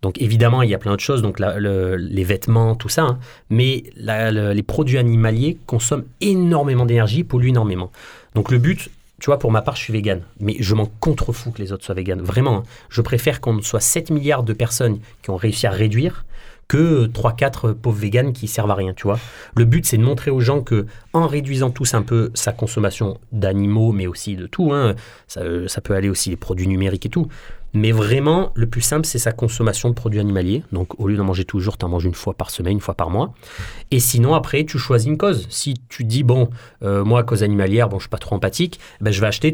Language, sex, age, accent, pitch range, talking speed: French, male, 30-49, French, 100-125 Hz, 240 wpm